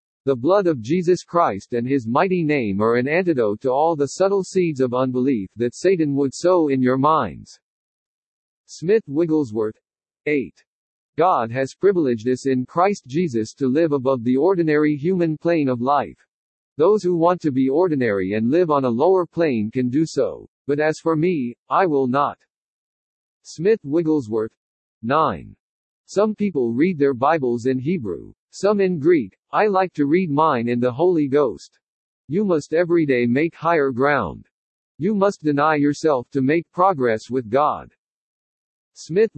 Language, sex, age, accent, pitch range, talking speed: English, male, 50-69, American, 130-175 Hz, 160 wpm